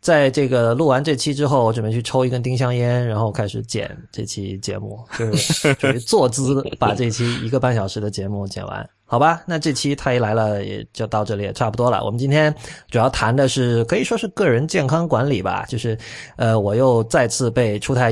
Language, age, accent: Chinese, 20-39, native